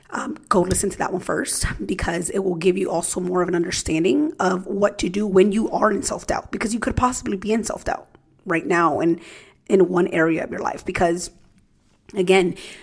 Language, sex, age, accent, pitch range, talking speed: English, female, 30-49, American, 180-215 Hz, 205 wpm